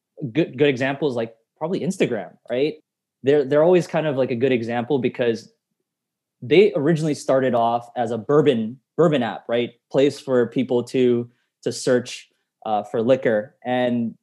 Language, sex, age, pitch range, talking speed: English, male, 20-39, 120-150 Hz, 155 wpm